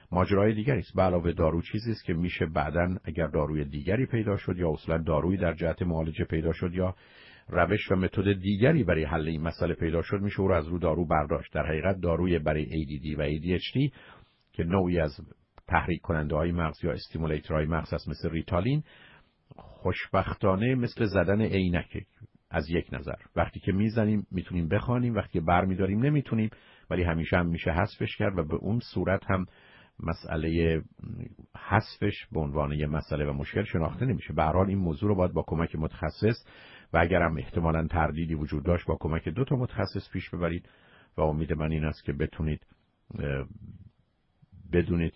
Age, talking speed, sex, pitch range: 50-69, 165 wpm, male, 80-95 Hz